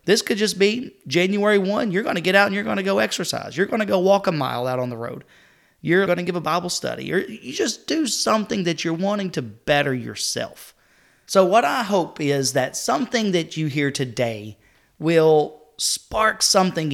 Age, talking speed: 30-49, 210 wpm